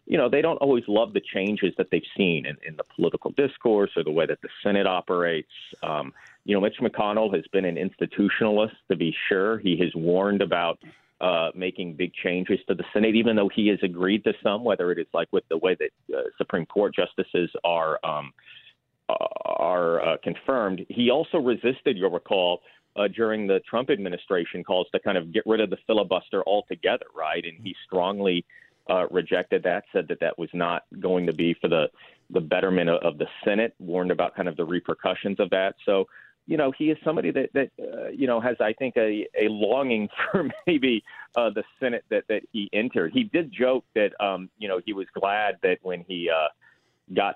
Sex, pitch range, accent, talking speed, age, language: male, 90-125 Hz, American, 205 wpm, 40-59, English